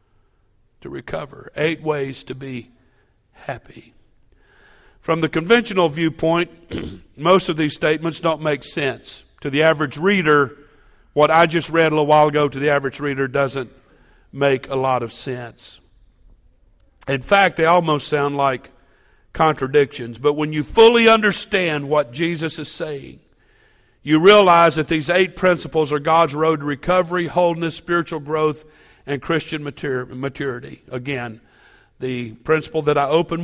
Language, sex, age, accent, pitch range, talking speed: English, male, 50-69, American, 130-165 Hz, 140 wpm